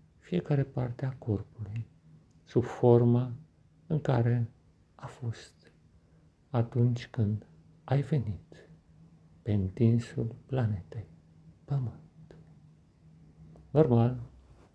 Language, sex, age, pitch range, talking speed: Romanian, male, 50-69, 110-130 Hz, 75 wpm